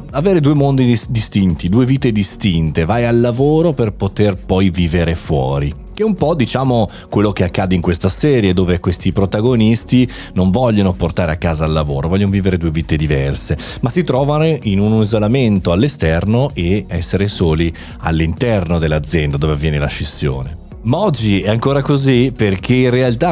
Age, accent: 30-49, native